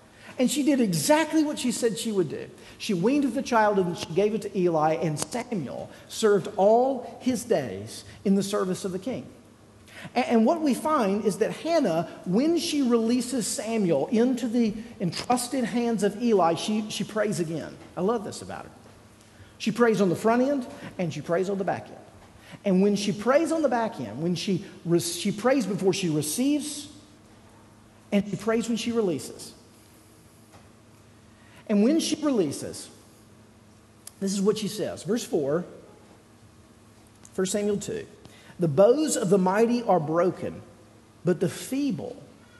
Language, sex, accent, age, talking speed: English, male, American, 50-69, 165 wpm